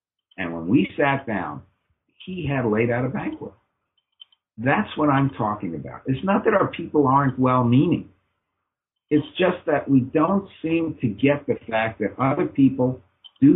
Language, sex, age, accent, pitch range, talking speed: English, male, 60-79, American, 110-155 Hz, 165 wpm